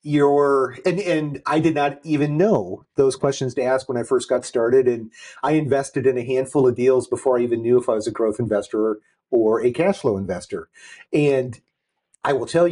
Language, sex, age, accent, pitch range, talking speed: English, male, 40-59, American, 115-145 Hz, 210 wpm